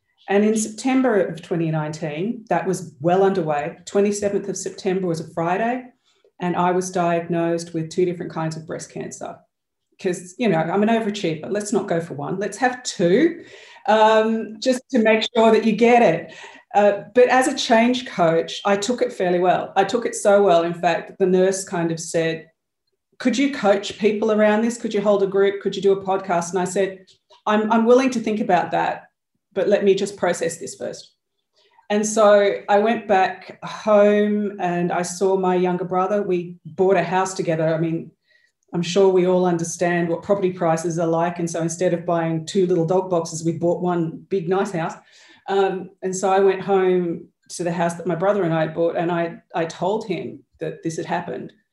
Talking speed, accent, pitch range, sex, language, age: 200 wpm, Australian, 170-205 Hz, female, English, 40-59